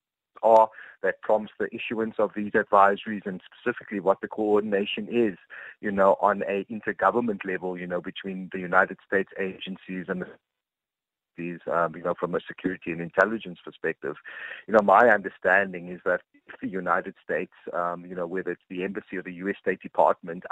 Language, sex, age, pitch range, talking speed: English, male, 30-49, 90-105 Hz, 175 wpm